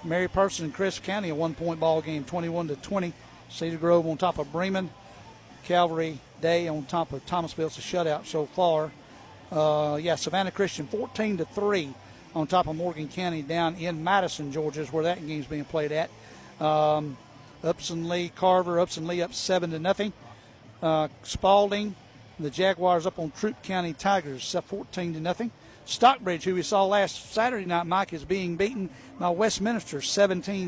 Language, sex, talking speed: English, male, 165 wpm